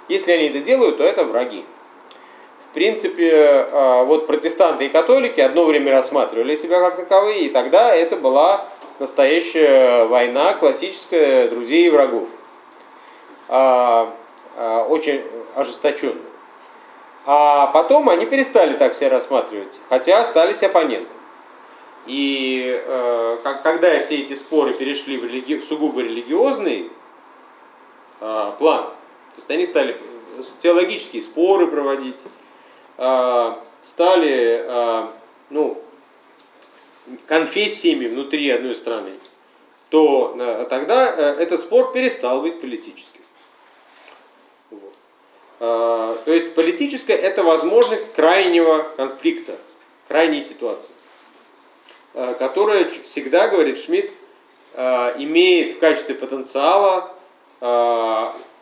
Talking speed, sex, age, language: 90 wpm, male, 30-49, English